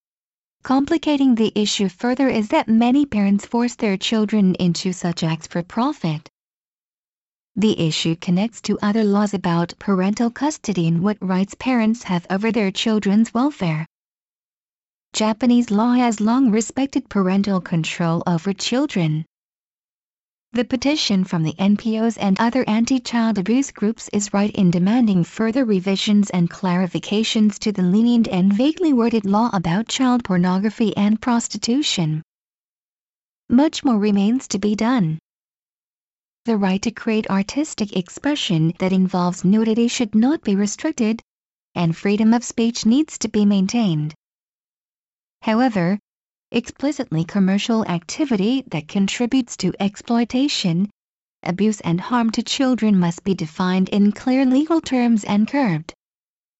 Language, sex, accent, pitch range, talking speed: English, female, American, 185-240 Hz, 130 wpm